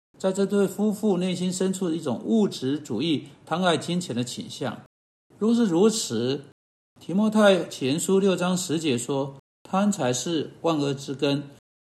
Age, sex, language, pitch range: 60-79, male, Chinese, 135-195 Hz